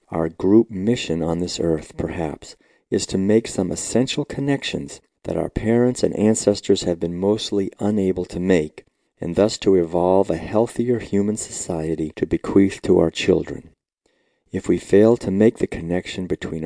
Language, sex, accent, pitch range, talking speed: English, male, American, 85-105 Hz, 160 wpm